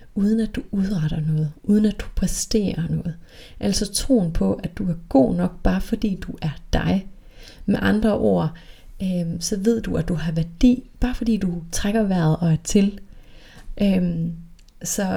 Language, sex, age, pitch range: Danish, female, 30-49, 165-210 Hz